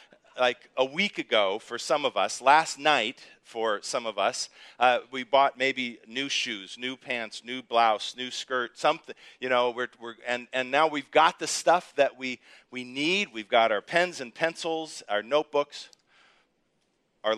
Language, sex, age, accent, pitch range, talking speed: English, male, 40-59, American, 130-165 Hz, 175 wpm